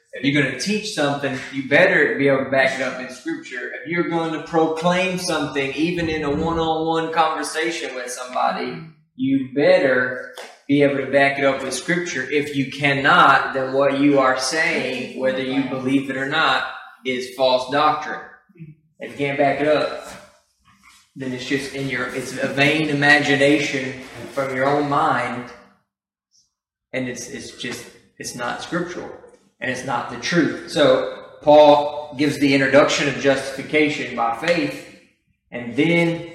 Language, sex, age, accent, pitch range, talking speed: English, male, 20-39, American, 130-155 Hz, 160 wpm